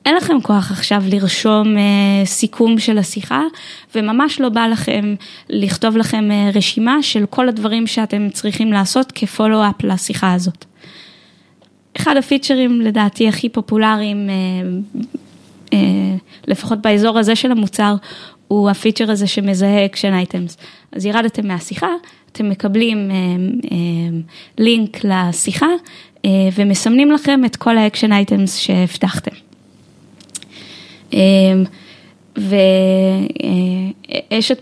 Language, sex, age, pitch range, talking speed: Hebrew, female, 20-39, 195-235 Hz, 110 wpm